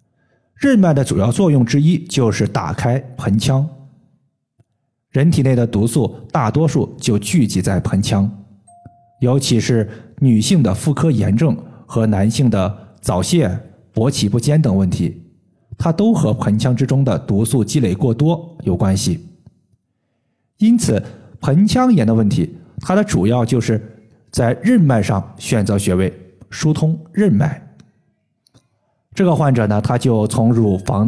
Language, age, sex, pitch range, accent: Chinese, 50-69, male, 110-150 Hz, native